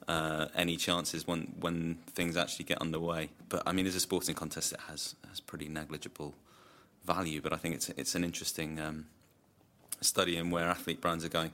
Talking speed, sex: 190 wpm, male